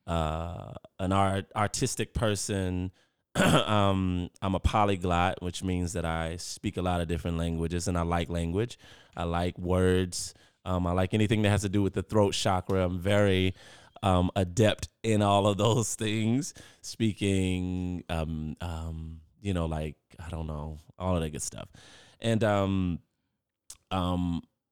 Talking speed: 155 wpm